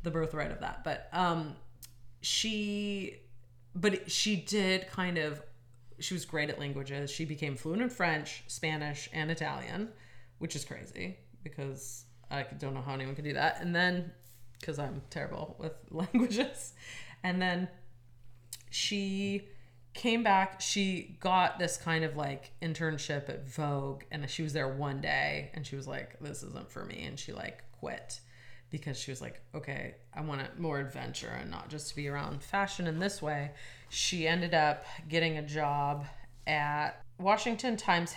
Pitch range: 140-175 Hz